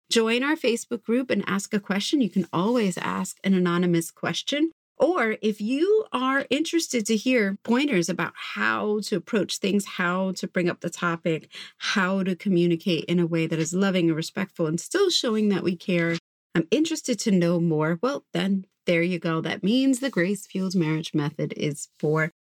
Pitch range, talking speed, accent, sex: 170-230 Hz, 185 wpm, American, female